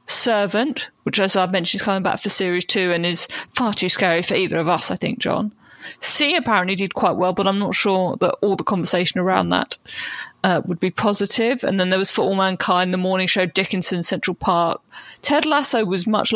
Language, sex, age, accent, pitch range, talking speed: English, female, 40-59, British, 190-240 Hz, 215 wpm